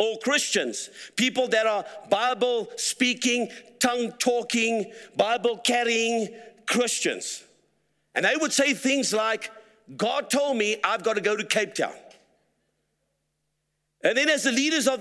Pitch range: 210-255 Hz